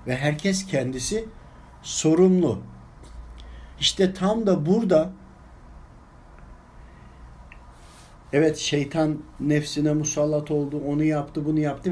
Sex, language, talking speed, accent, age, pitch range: male, Turkish, 85 wpm, native, 60-79, 150-195 Hz